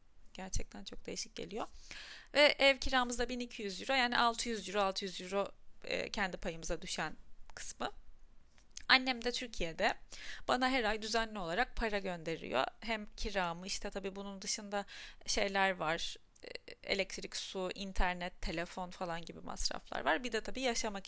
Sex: female